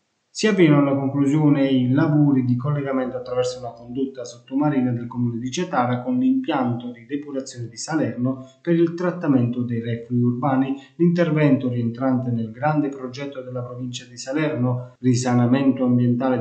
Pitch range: 125-145 Hz